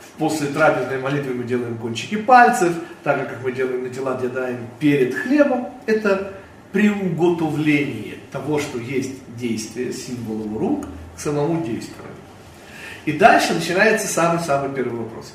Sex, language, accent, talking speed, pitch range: male, Russian, native, 135 wpm, 130-195 Hz